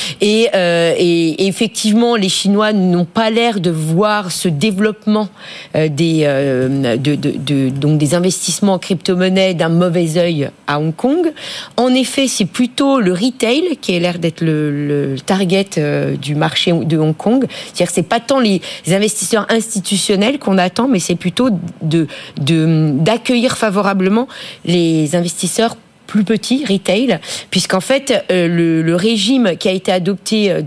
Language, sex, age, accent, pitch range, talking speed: French, female, 40-59, French, 165-220 Hz, 165 wpm